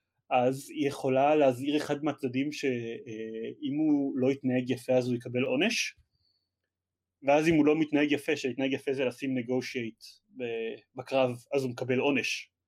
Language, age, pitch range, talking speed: Hebrew, 30-49, 125-145 Hz, 150 wpm